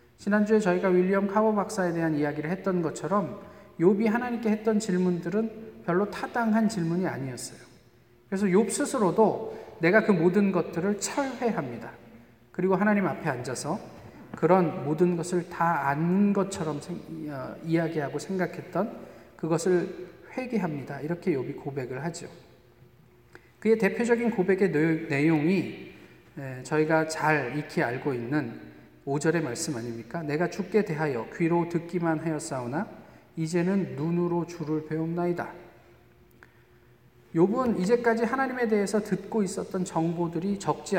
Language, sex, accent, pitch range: Korean, male, native, 150-205 Hz